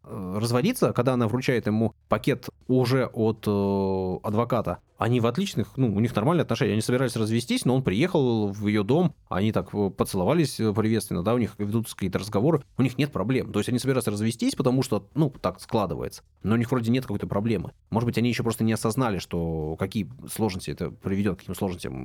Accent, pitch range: native, 95-120 Hz